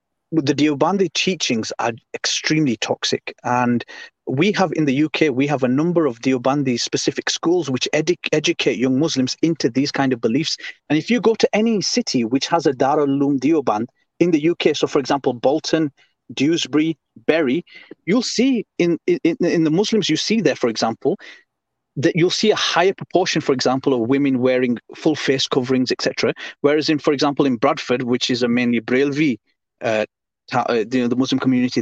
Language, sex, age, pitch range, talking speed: English, male, 30-49, 130-170 Hz, 185 wpm